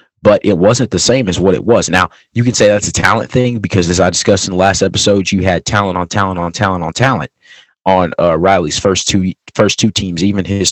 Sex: male